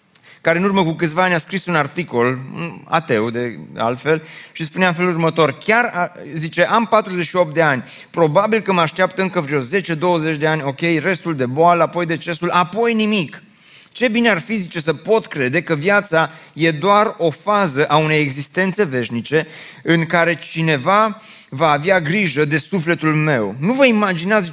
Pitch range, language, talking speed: 160-200 Hz, Romanian, 175 wpm